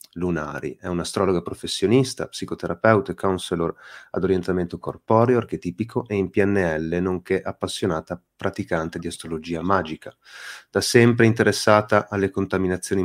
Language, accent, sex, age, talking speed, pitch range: Italian, native, male, 30-49, 120 wpm, 85-105 Hz